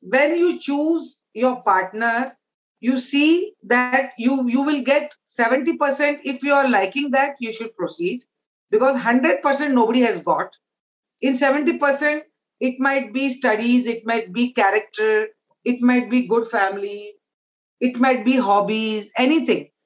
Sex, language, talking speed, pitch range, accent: female, English, 140 wpm, 230-285 Hz, Indian